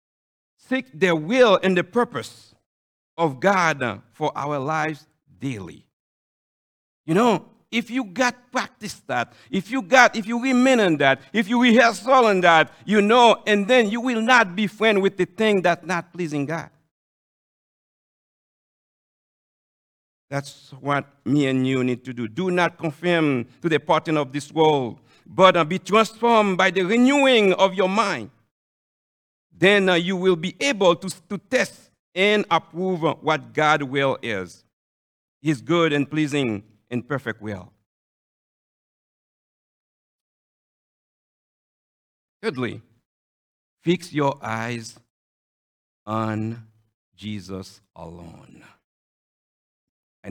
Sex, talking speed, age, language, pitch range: male, 125 wpm, 60-79, English, 120-190 Hz